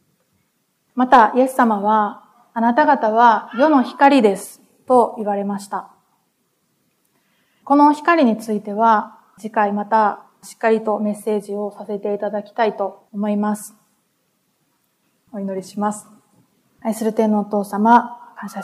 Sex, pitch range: female, 205-235 Hz